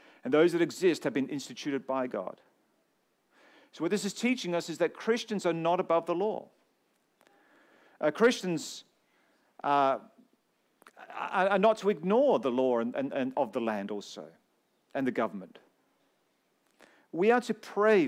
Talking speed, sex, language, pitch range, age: 155 wpm, male, English, 160-230 Hz, 50-69